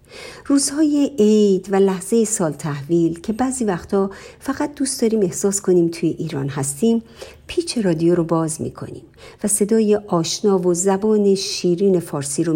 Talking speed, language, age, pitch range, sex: 145 wpm, Persian, 50-69, 165-235 Hz, female